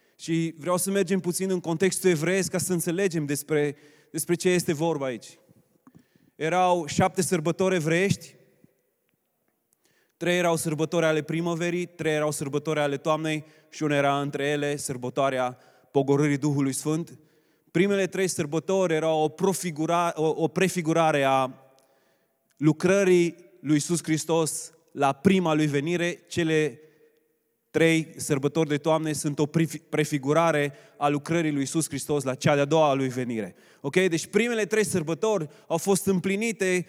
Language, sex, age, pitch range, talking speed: Romanian, male, 20-39, 155-185 Hz, 135 wpm